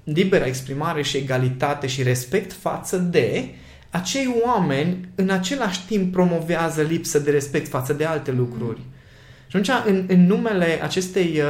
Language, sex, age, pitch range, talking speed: Romanian, male, 20-39, 140-215 Hz, 140 wpm